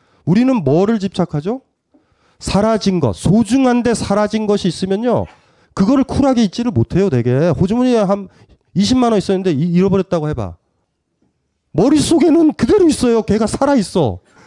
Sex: male